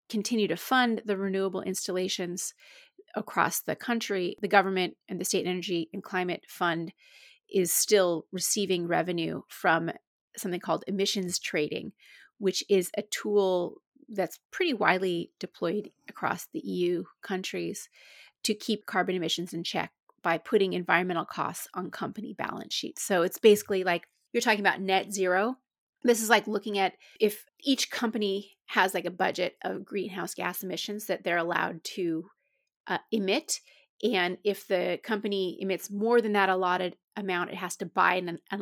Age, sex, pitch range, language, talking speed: 30-49, female, 180-215 Hz, English, 155 wpm